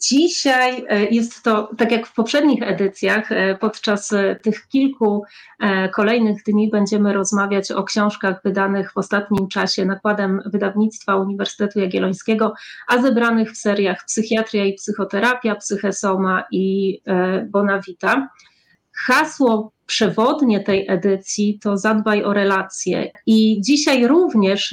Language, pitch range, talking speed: Polish, 195-220 Hz, 110 wpm